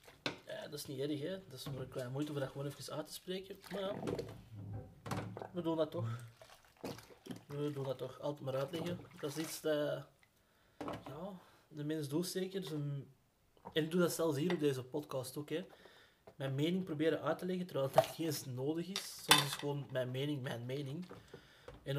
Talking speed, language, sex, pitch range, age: 200 wpm, Dutch, male, 135-175 Hz, 20-39